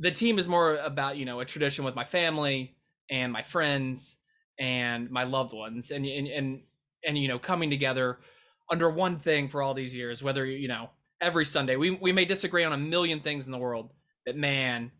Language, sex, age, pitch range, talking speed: English, male, 20-39, 135-180 Hz, 210 wpm